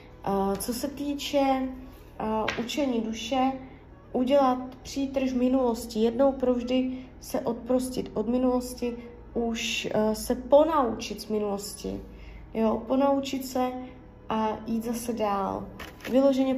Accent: native